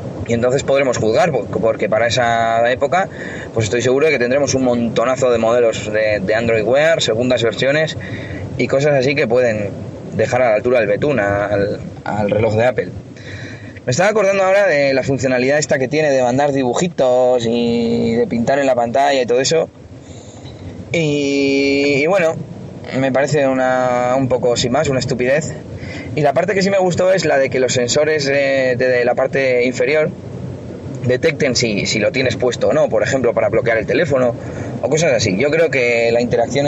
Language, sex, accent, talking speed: Spanish, male, Spanish, 185 wpm